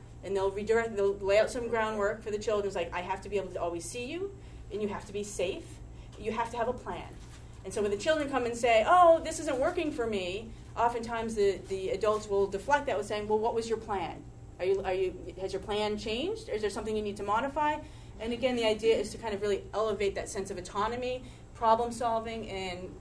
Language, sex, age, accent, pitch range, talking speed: English, female, 30-49, American, 180-230 Hz, 250 wpm